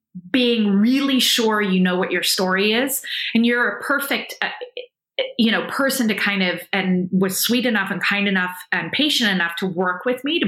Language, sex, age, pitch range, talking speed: English, female, 30-49, 185-250 Hz, 200 wpm